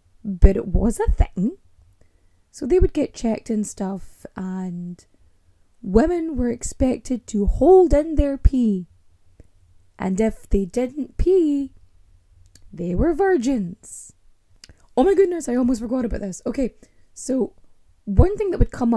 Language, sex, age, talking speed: English, female, 20-39, 140 wpm